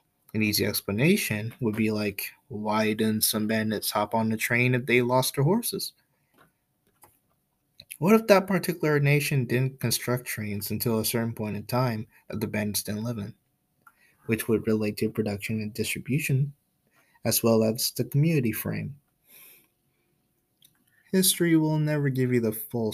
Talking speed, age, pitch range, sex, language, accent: 155 wpm, 20-39, 110-140 Hz, male, English, American